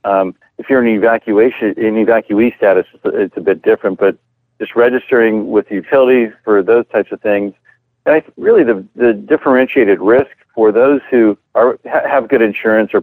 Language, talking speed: English, 175 wpm